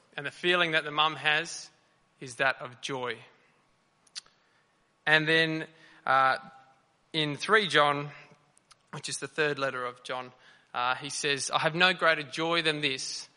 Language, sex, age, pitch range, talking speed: English, male, 20-39, 135-160 Hz, 155 wpm